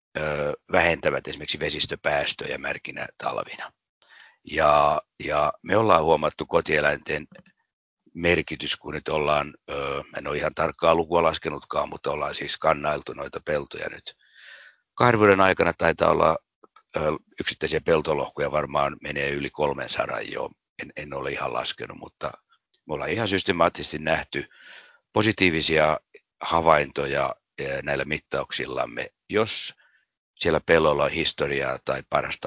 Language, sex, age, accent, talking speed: Finnish, male, 60-79, native, 115 wpm